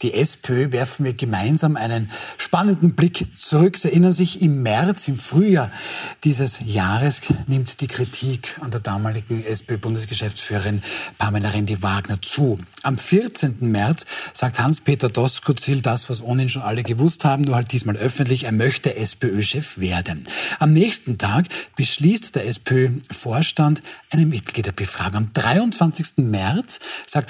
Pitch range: 110-160 Hz